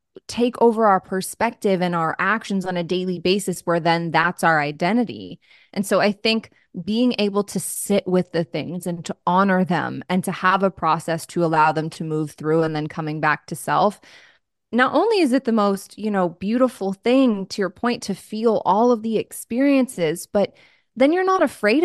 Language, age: English, 20-39